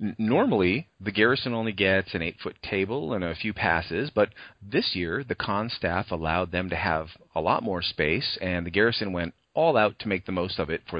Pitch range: 85-105 Hz